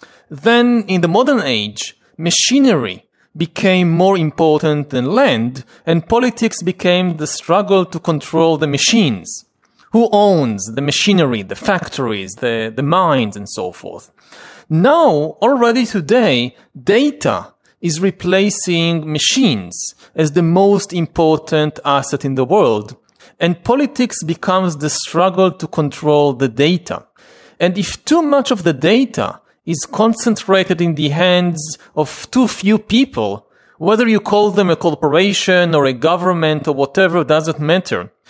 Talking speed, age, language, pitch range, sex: 135 wpm, 40-59, English, 150-200 Hz, male